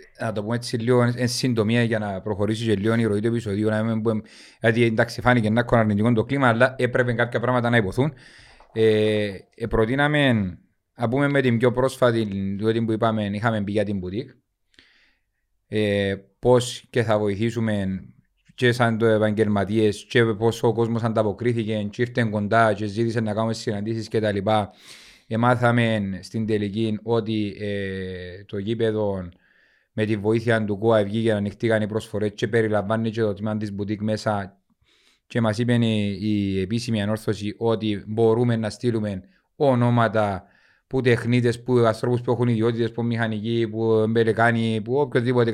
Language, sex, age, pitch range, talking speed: Greek, male, 30-49, 105-120 Hz, 155 wpm